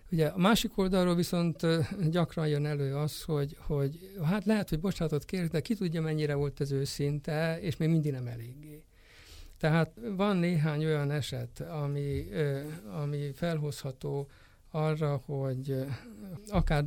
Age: 60-79